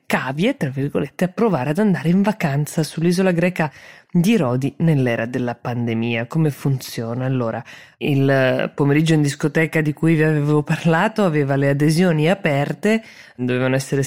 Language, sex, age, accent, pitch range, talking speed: Italian, female, 20-39, native, 140-175 Hz, 145 wpm